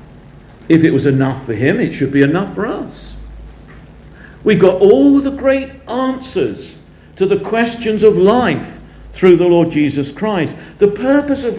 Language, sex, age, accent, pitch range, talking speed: English, male, 50-69, British, 135-215 Hz, 160 wpm